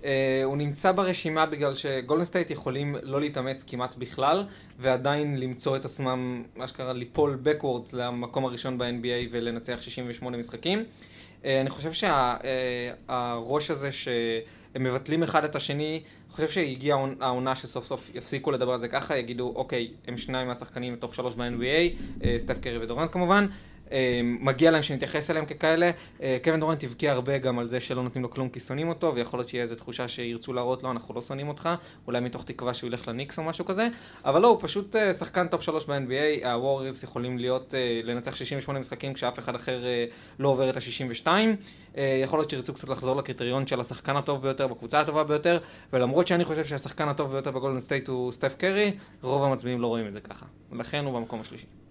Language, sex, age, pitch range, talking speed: Hebrew, male, 20-39, 125-150 Hz, 175 wpm